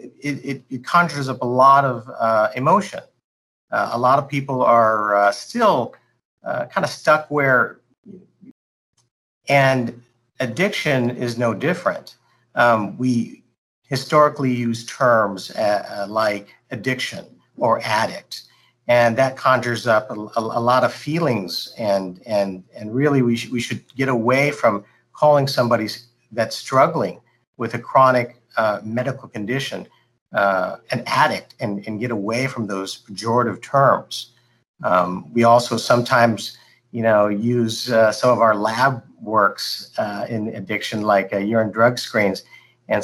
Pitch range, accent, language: 105-130 Hz, American, English